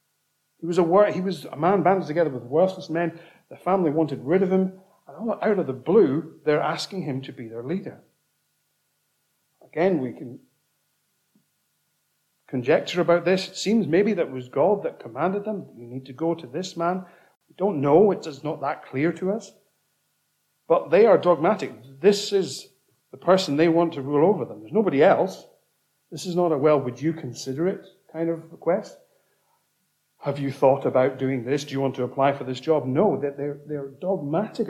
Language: English